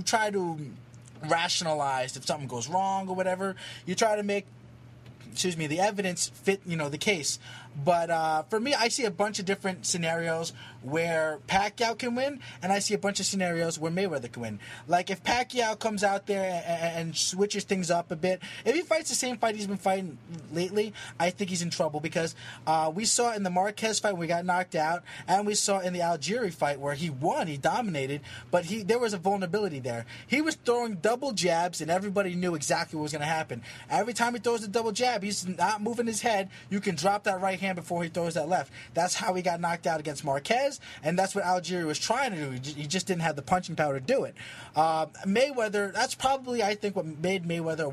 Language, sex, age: English, male, 20-39